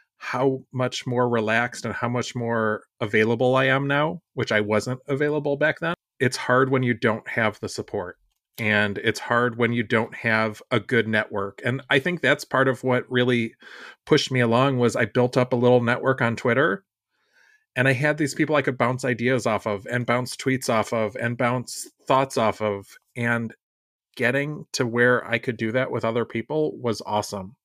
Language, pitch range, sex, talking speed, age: English, 110-130 Hz, male, 195 wpm, 30-49